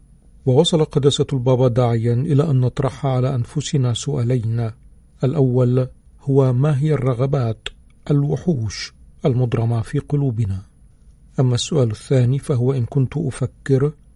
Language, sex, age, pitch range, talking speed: Arabic, male, 50-69, 120-140 Hz, 110 wpm